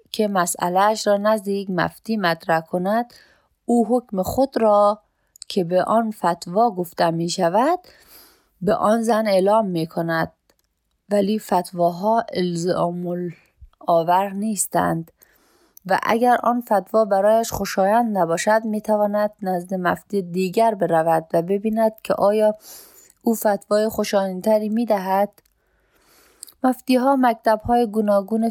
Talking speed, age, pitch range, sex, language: 110 wpm, 30-49, 180-220 Hz, female, Persian